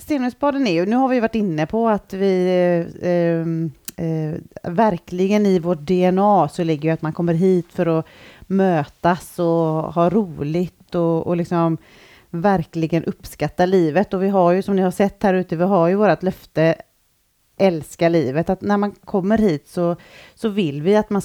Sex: female